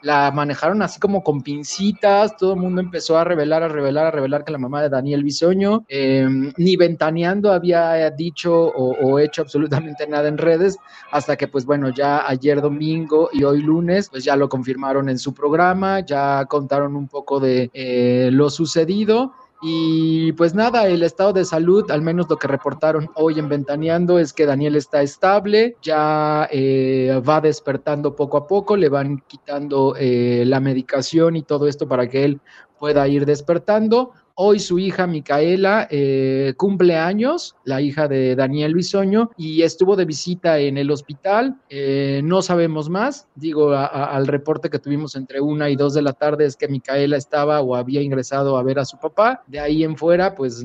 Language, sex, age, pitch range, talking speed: English, male, 30-49, 140-170 Hz, 180 wpm